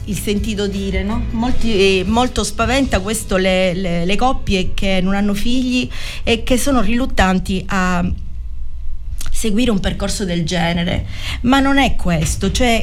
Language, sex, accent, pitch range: Italian, female, native, 185-235 Hz